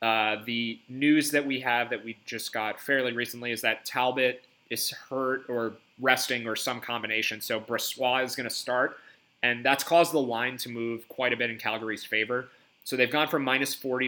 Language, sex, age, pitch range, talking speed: English, male, 30-49, 115-135 Hz, 200 wpm